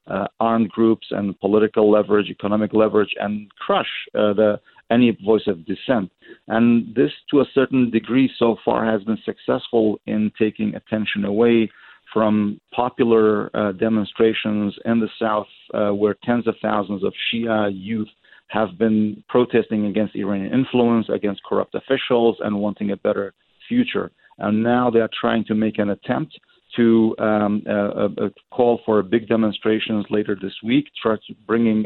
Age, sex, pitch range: 40-59, male, 105-115 Hz